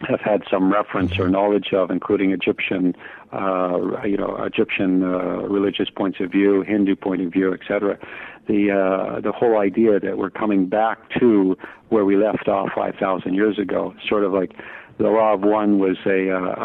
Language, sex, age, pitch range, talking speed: English, male, 50-69, 95-105 Hz, 180 wpm